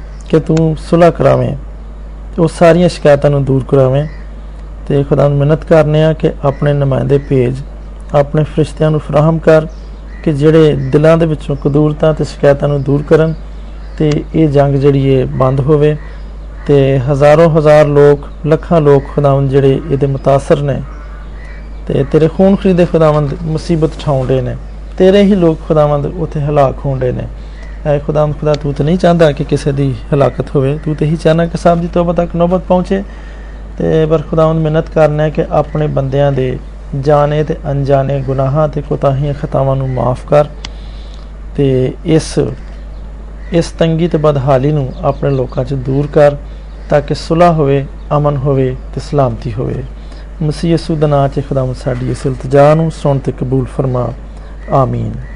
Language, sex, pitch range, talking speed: Hindi, male, 135-160 Hz, 125 wpm